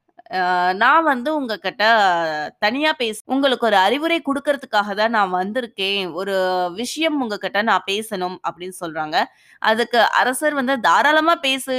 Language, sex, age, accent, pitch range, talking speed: Tamil, female, 20-39, native, 205-275 Hz, 130 wpm